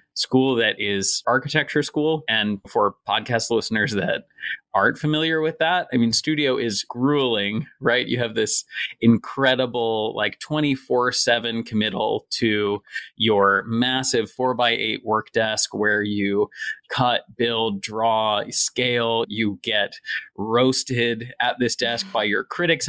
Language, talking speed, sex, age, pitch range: English, 135 wpm, male, 30-49, 110-135 Hz